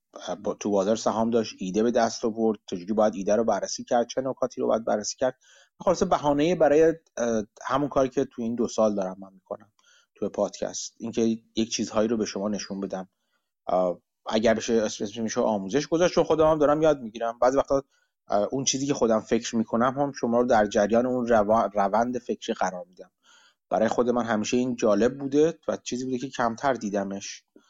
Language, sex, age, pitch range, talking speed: Persian, male, 30-49, 105-140 Hz, 185 wpm